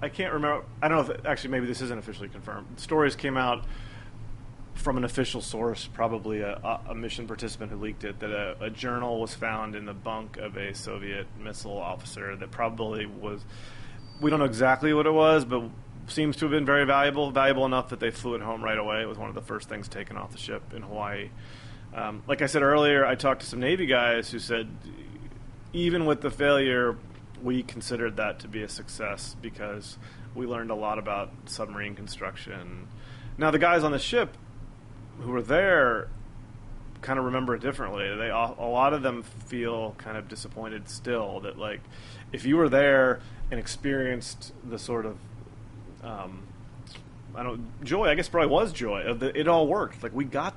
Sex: male